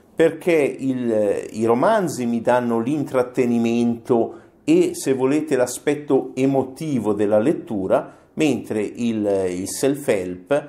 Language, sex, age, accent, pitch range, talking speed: Italian, male, 50-69, native, 95-120 Hz, 100 wpm